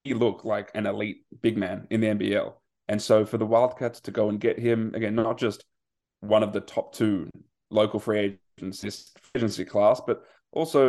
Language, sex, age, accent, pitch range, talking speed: English, male, 20-39, Australian, 105-125 Hz, 180 wpm